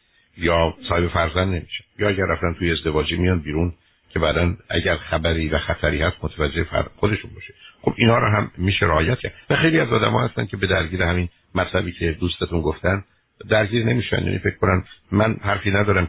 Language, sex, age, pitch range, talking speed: Persian, male, 60-79, 80-95 Hz, 180 wpm